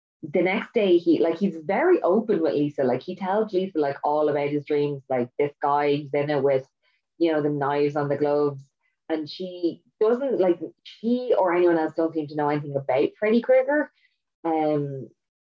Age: 20-39